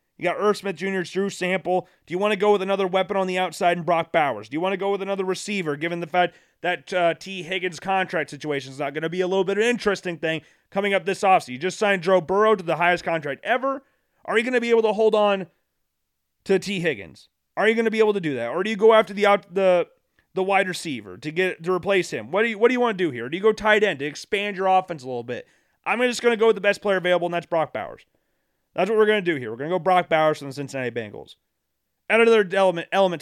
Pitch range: 165-205 Hz